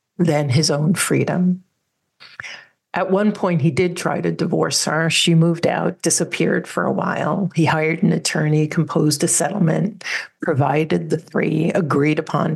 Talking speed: 155 wpm